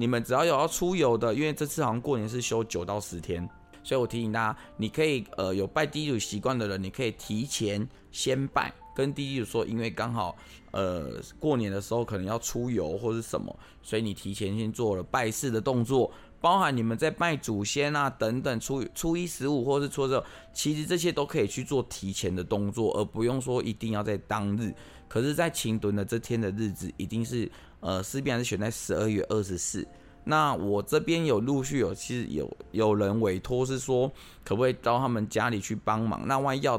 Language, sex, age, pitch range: Chinese, male, 20-39, 100-130 Hz